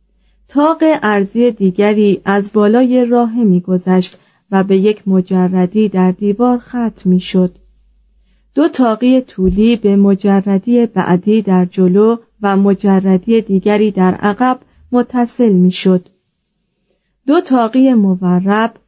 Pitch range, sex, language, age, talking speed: 185-235 Hz, female, Persian, 30-49, 110 wpm